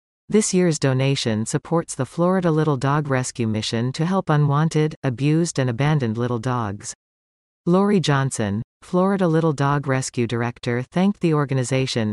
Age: 40-59